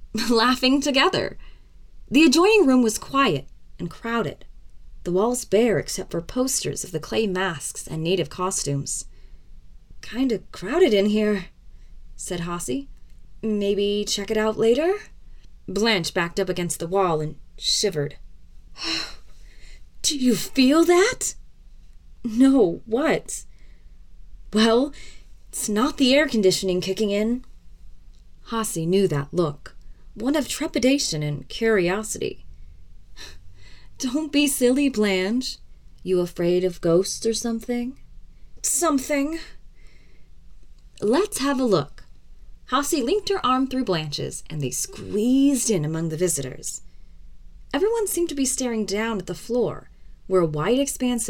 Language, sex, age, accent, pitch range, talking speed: English, female, 20-39, American, 175-260 Hz, 125 wpm